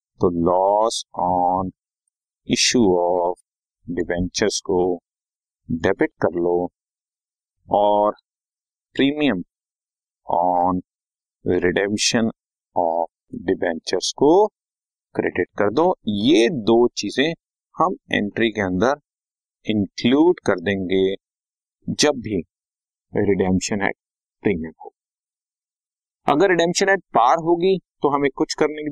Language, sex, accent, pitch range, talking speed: Hindi, male, native, 95-145 Hz, 95 wpm